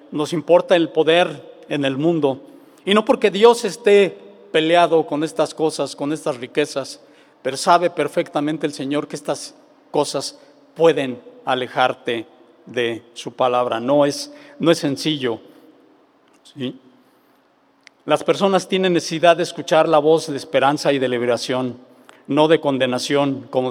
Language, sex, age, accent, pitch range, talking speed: Spanish, male, 50-69, Mexican, 135-165 Hz, 135 wpm